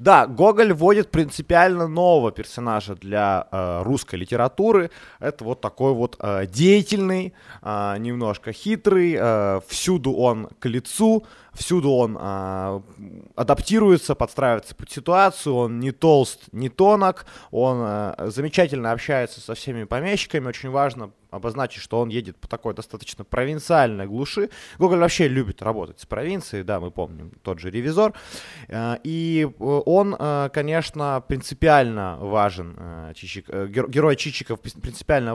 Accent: native